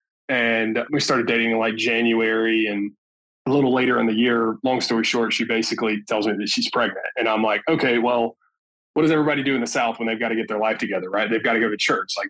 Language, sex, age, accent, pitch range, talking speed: English, male, 20-39, American, 110-135 Hz, 255 wpm